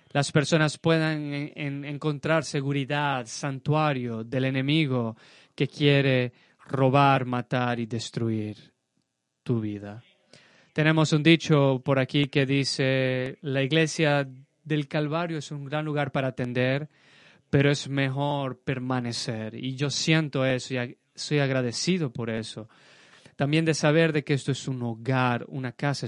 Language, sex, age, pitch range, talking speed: Spanish, male, 30-49, 130-150 Hz, 140 wpm